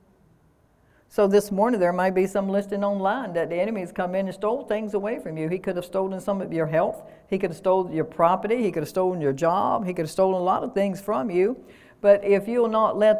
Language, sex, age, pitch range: English, female, 60-79, 180-220 Hz